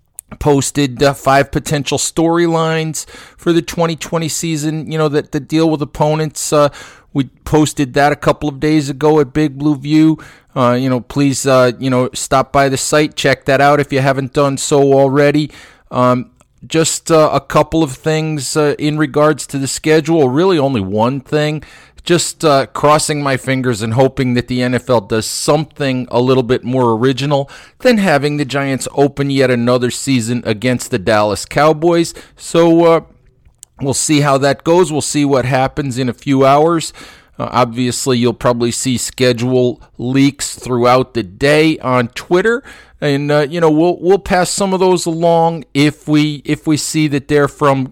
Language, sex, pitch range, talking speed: English, male, 130-155 Hz, 175 wpm